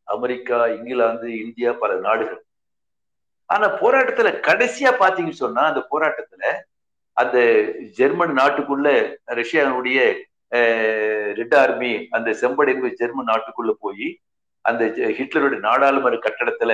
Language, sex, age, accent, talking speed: Tamil, male, 60-79, native, 95 wpm